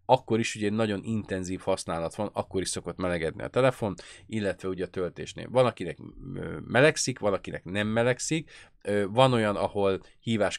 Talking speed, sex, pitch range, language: 160 wpm, male, 95-115 Hz, Hungarian